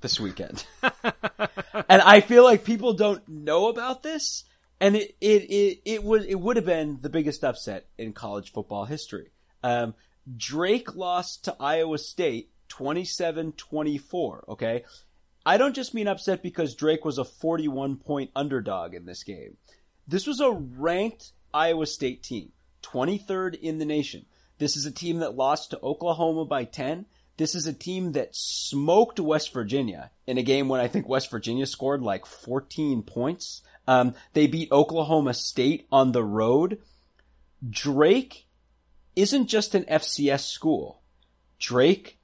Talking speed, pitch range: 155 wpm, 130-190 Hz